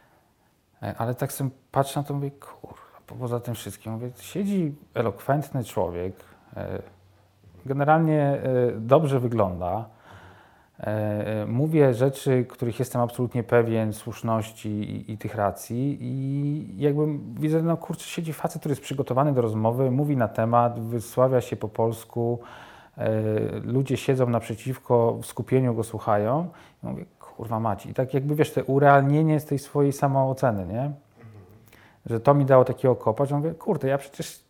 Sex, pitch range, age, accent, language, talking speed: male, 115-140 Hz, 40-59, native, Polish, 140 wpm